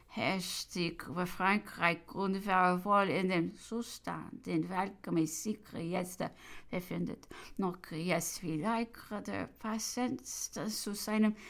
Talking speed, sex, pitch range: 120 wpm, female, 205-265 Hz